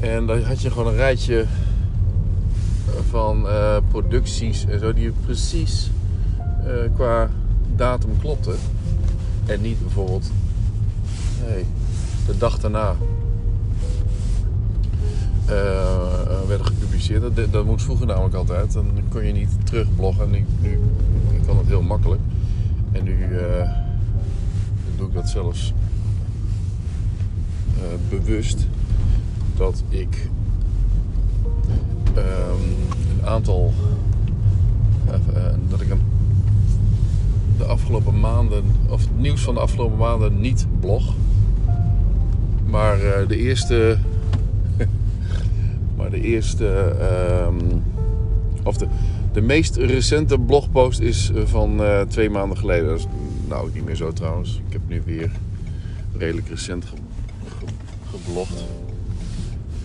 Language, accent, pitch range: Finnish, Dutch, 95-105 Hz